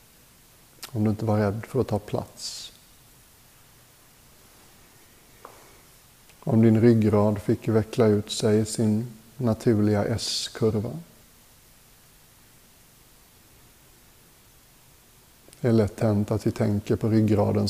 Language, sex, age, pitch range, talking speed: Swedish, male, 60-79, 110-120 Hz, 100 wpm